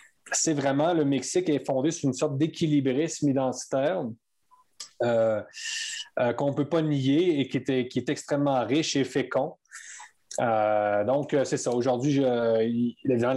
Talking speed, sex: 155 wpm, male